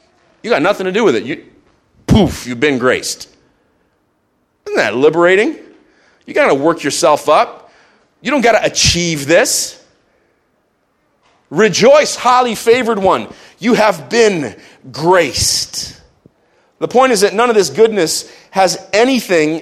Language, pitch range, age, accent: English, 170-220 Hz, 40-59, American